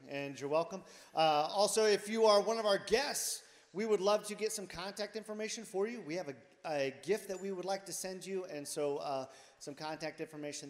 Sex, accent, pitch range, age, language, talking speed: male, American, 155-200 Hz, 40-59, English, 225 wpm